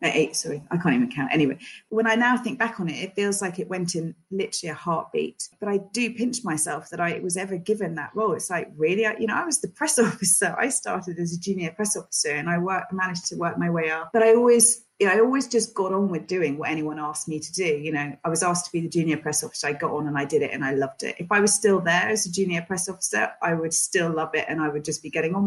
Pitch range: 155-190 Hz